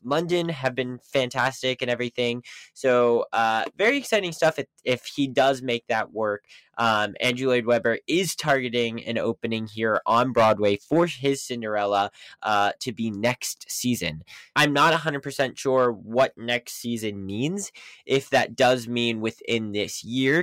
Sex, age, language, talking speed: male, 10-29, English, 155 wpm